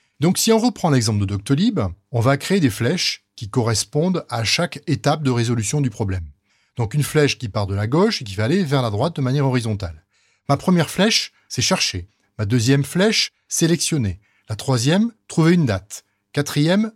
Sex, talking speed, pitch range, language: male, 190 wpm, 110-175 Hz, French